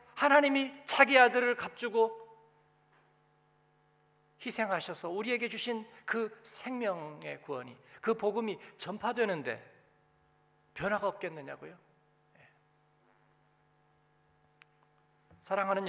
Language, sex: Korean, male